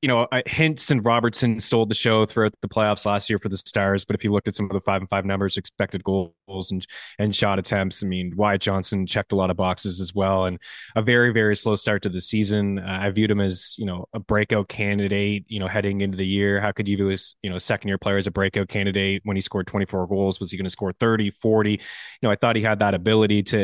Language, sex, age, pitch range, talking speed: English, male, 20-39, 100-115 Hz, 270 wpm